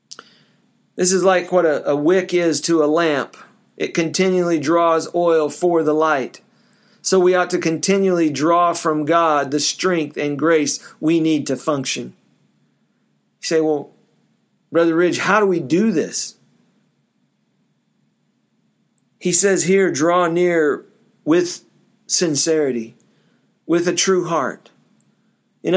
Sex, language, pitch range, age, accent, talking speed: male, English, 160-195 Hz, 50-69, American, 130 wpm